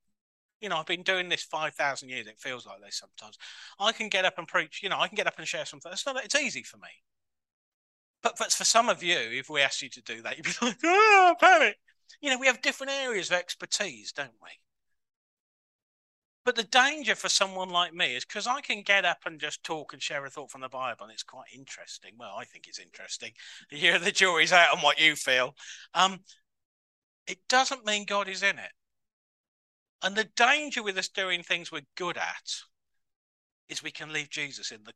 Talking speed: 220 wpm